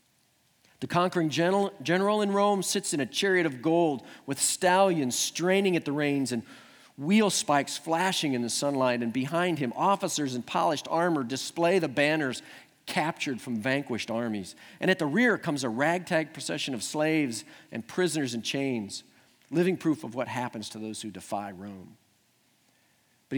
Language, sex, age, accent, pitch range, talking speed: English, male, 50-69, American, 130-185 Hz, 160 wpm